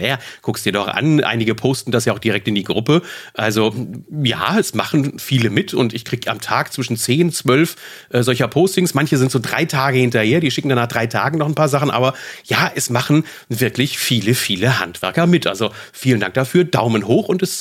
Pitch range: 115-165 Hz